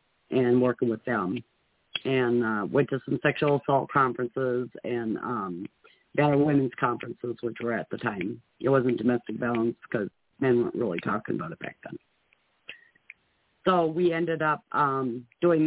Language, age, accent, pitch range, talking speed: English, 50-69, American, 130-155 Hz, 155 wpm